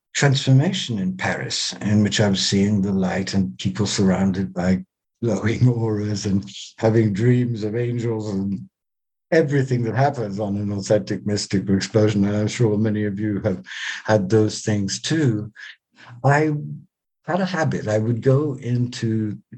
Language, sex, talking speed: English, male, 150 wpm